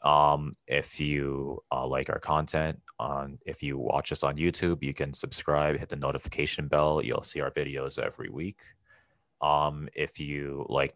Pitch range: 70-80 Hz